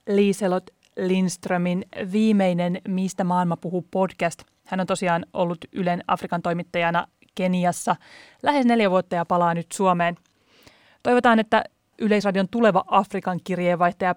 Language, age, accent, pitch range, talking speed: Finnish, 30-49, native, 175-200 Hz, 120 wpm